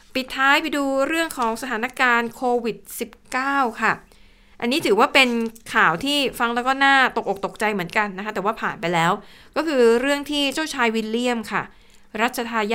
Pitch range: 200-245 Hz